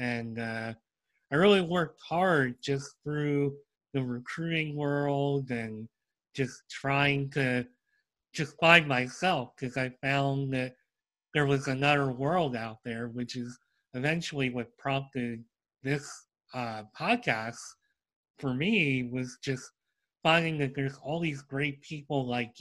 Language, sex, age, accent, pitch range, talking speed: English, male, 30-49, American, 125-145 Hz, 125 wpm